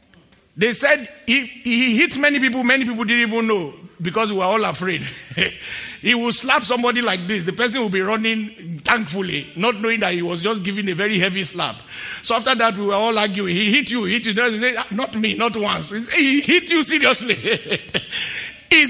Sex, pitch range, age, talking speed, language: male, 205-260 Hz, 50-69, 195 wpm, English